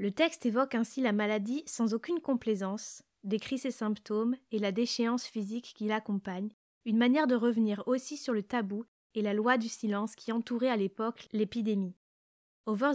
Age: 20-39